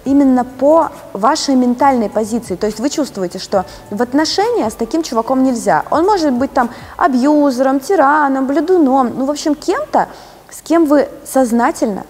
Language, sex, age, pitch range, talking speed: Russian, female, 20-39, 200-295 Hz, 155 wpm